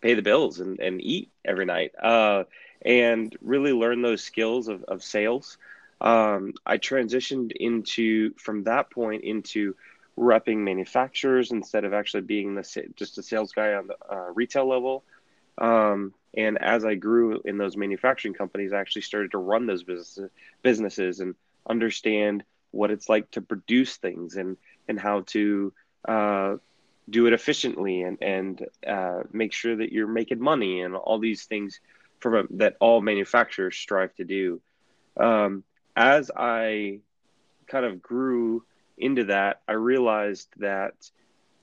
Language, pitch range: English, 100-115 Hz